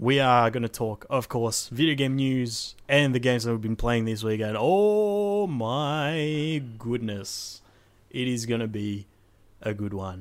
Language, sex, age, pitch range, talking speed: English, male, 20-39, 105-130 Hz, 180 wpm